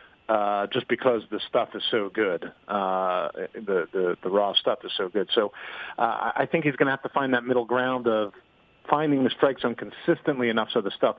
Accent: American